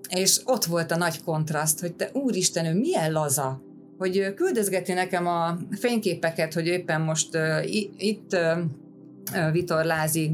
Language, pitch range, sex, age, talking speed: Hungarian, 155-190 Hz, female, 30-49, 135 wpm